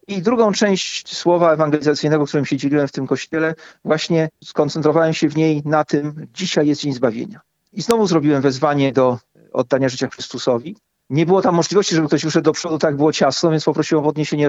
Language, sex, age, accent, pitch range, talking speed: Polish, male, 40-59, native, 145-170 Hz, 190 wpm